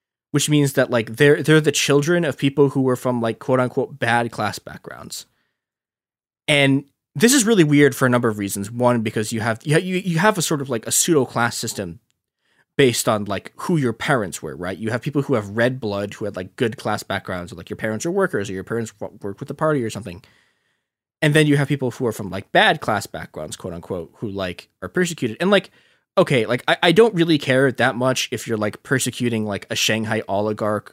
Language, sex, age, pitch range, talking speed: English, male, 20-39, 110-155 Hz, 225 wpm